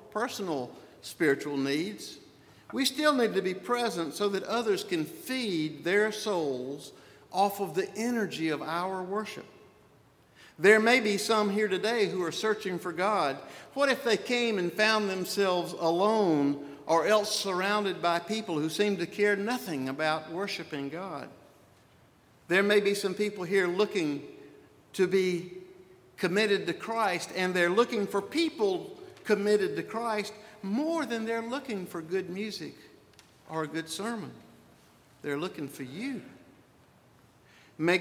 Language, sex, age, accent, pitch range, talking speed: English, male, 50-69, American, 165-215 Hz, 145 wpm